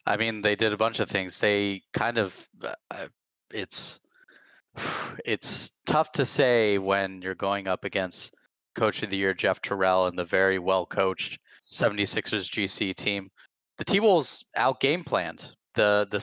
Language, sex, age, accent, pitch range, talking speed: English, male, 20-39, American, 95-110 Hz, 165 wpm